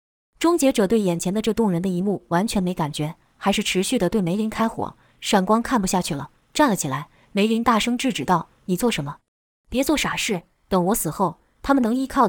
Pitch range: 185-250 Hz